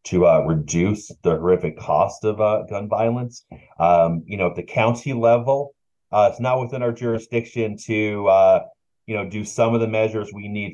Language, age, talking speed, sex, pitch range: English, 30-49, 190 wpm, male, 90-115 Hz